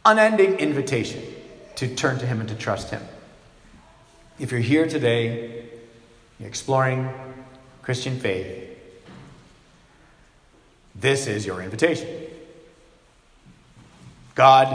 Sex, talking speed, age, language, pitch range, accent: male, 90 wpm, 40-59, English, 105-135 Hz, American